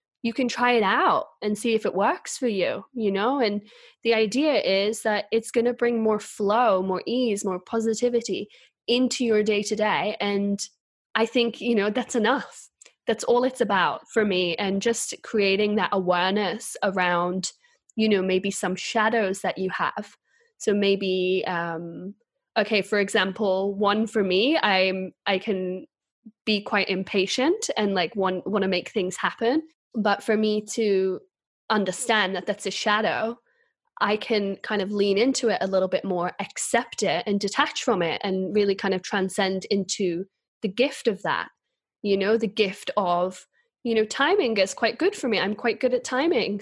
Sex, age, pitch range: female, 10-29, 190-235 Hz